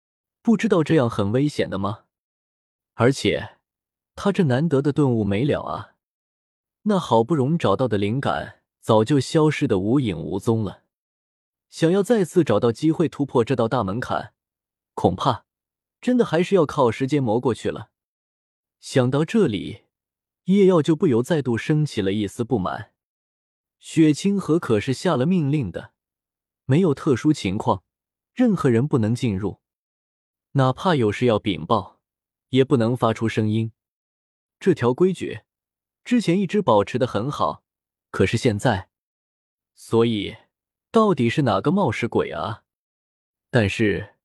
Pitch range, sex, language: 105-160 Hz, male, Chinese